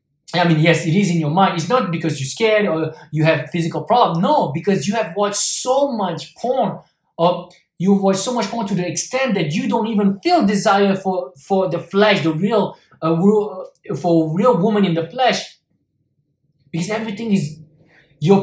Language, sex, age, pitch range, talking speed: English, male, 20-39, 155-200 Hz, 190 wpm